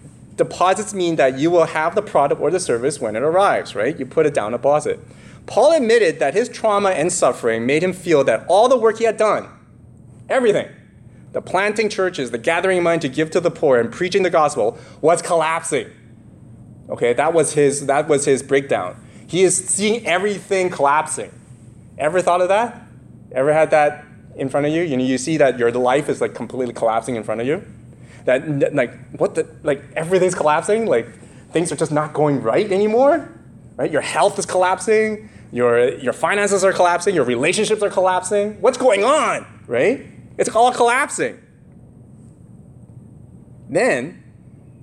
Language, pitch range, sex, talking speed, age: English, 140-210 Hz, male, 175 wpm, 30-49